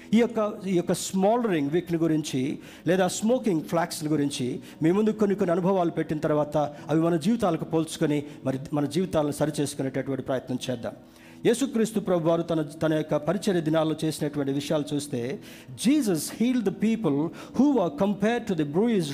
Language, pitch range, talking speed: Telugu, 155-215 Hz, 150 wpm